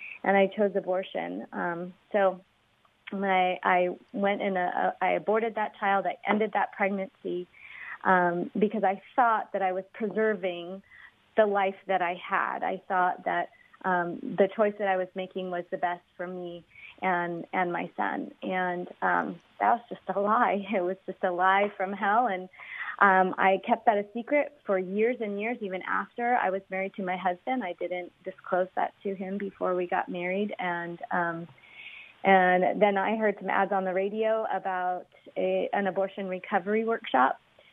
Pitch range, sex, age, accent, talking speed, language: 180-200 Hz, female, 30-49, American, 180 wpm, English